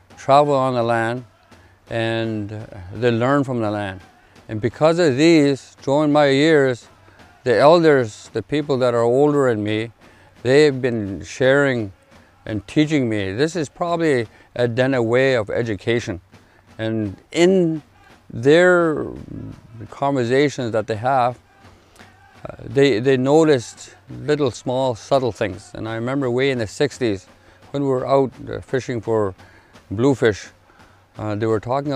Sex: male